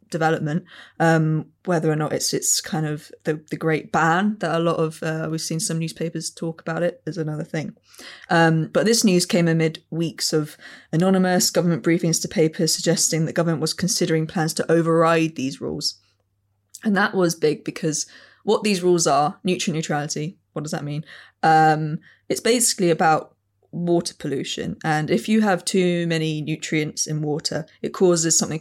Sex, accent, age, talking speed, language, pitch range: female, British, 20-39, 175 wpm, English, 155-180 Hz